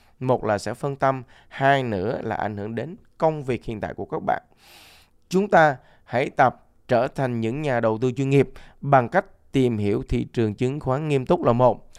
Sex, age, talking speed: male, 20-39, 210 wpm